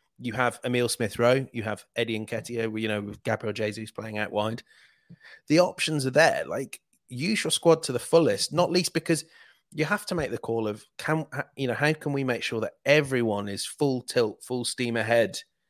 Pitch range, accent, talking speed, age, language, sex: 115-145 Hz, British, 205 wpm, 30-49, English, male